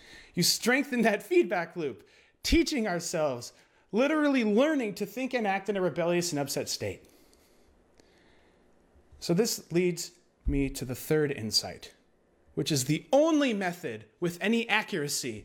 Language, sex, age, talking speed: English, male, 30-49, 135 wpm